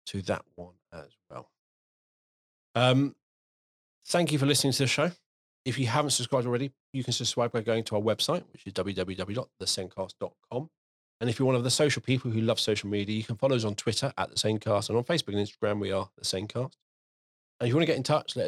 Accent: British